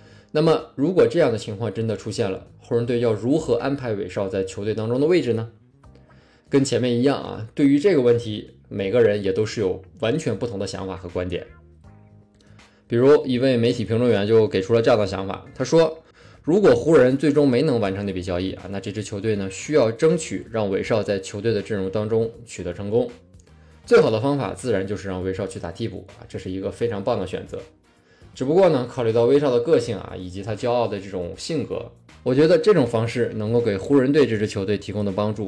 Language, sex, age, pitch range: Chinese, male, 20-39, 100-125 Hz